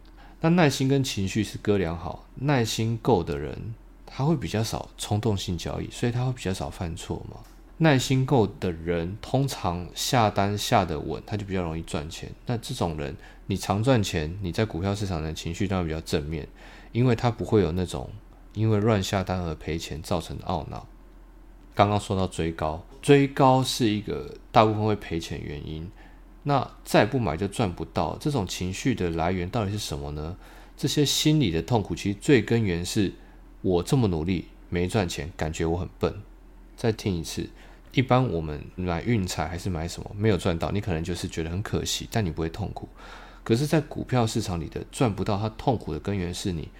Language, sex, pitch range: Chinese, male, 85-115 Hz